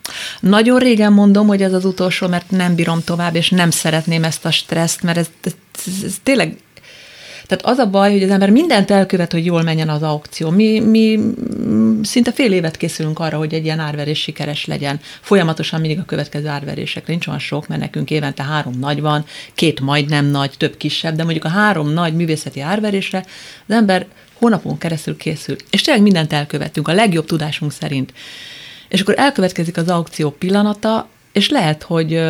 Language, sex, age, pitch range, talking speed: Hungarian, female, 30-49, 155-200 Hz, 180 wpm